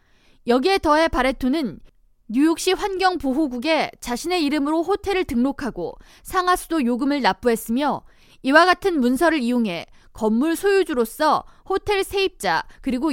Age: 20-39